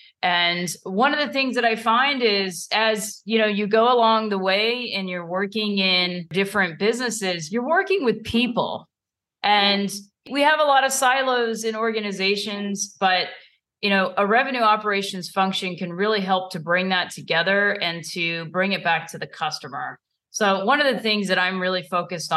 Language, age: English, 30-49